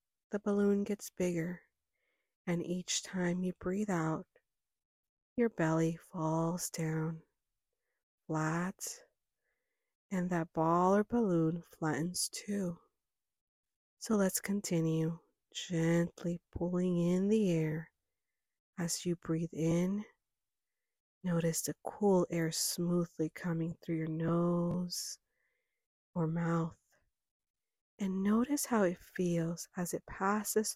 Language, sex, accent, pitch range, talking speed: English, female, American, 165-195 Hz, 105 wpm